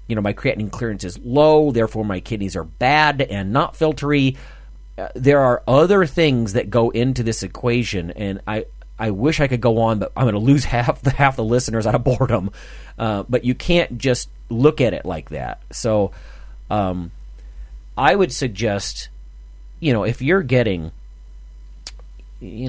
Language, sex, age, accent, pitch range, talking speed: English, male, 40-59, American, 95-125 Hz, 175 wpm